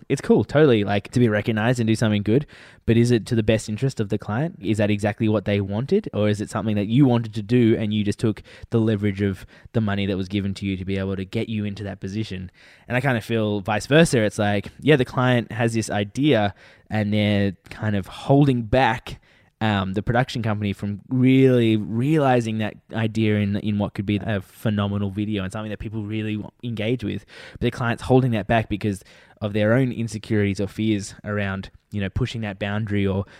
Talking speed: 220 wpm